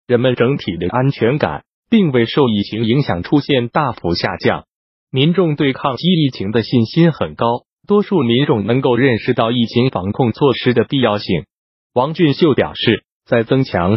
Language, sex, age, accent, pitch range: Chinese, male, 20-39, native, 115-150 Hz